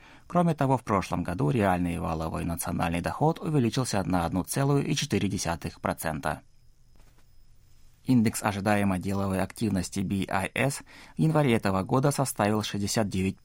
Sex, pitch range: male, 90-135 Hz